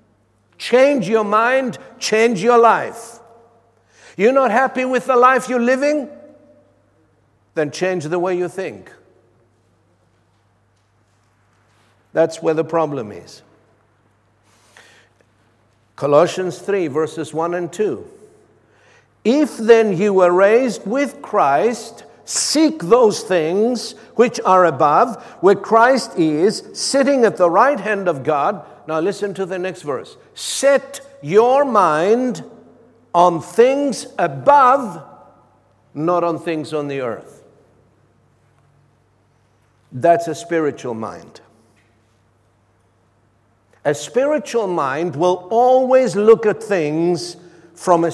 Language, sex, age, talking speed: English, male, 60-79, 105 wpm